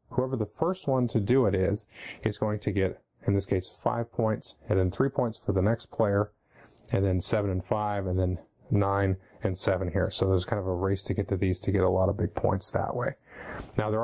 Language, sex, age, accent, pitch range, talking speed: English, male, 30-49, American, 95-115 Hz, 245 wpm